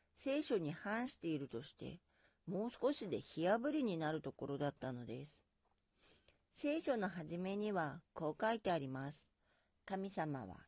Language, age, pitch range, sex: Japanese, 50-69, 150-230 Hz, female